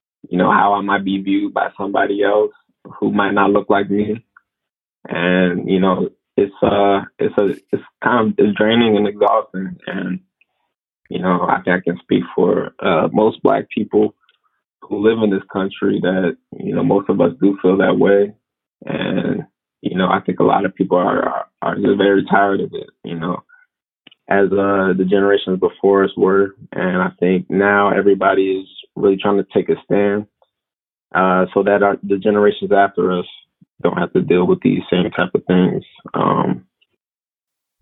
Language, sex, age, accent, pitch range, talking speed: English, male, 20-39, American, 95-100 Hz, 180 wpm